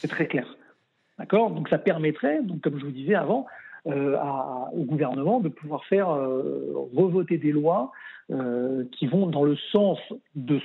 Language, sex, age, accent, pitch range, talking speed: French, male, 50-69, French, 140-175 Hz, 175 wpm